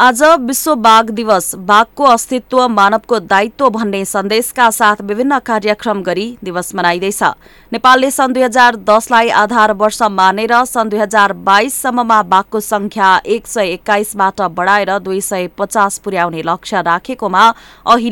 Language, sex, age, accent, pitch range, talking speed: English, female, 20-39, Indian, 185-230 Hz, 95 wpm